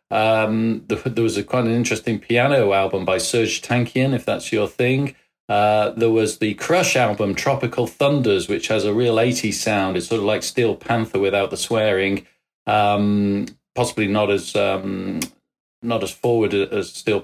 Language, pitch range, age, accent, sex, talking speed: English, 110-130 Hz, 40-59, British, male, 170 wpm